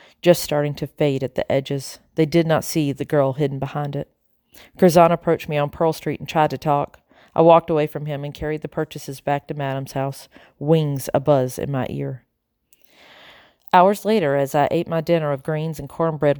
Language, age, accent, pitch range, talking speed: English, 40-59, American, 140-170 Hz, 200 wpm